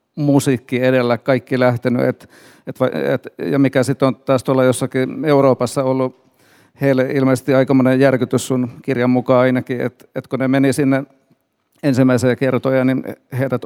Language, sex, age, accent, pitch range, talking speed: Finnish, male, 50-69, native, 125-140 Hz, 150 wpm